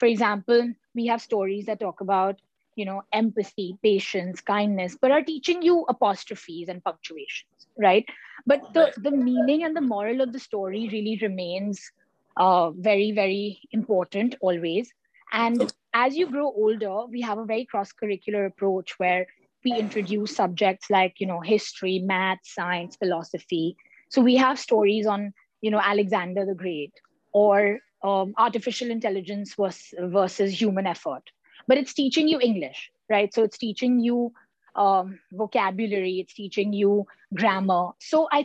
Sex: female